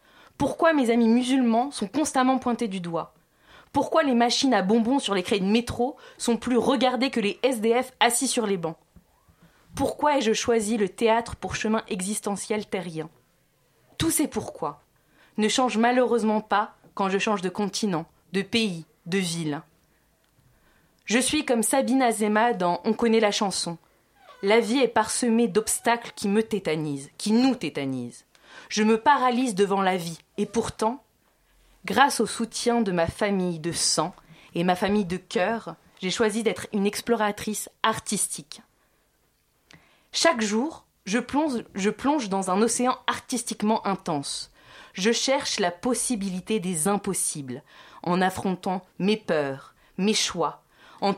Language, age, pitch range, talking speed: French, 20-39, 185-235 Hz, 145 wpm